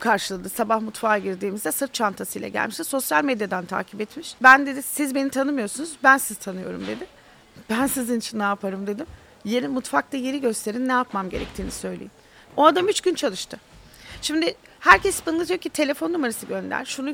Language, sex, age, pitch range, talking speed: Turkish, female, 40-59, 225-300 Hz, 165 wpm